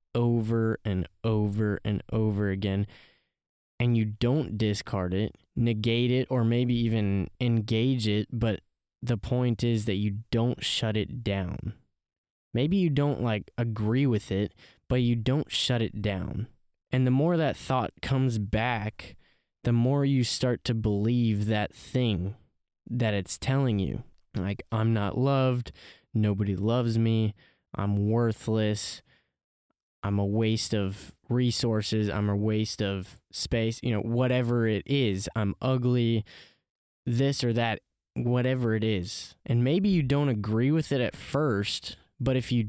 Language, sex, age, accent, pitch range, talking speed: English, male, 10-29, American, 105-125 Hz, 145 wpm